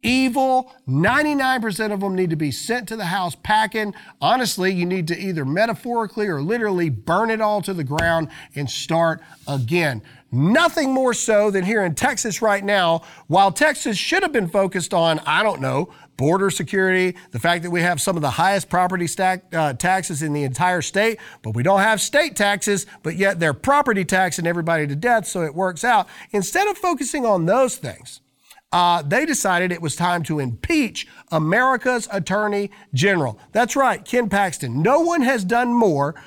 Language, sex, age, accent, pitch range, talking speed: English, male, 40-59, American, 155-215 Hz, 180 wpm